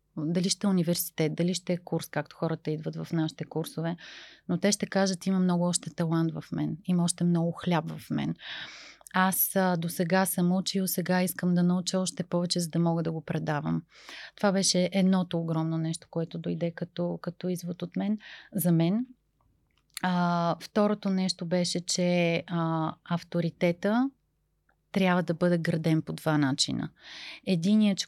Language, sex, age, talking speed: Bulgarian, female, 30-49, 165 wpm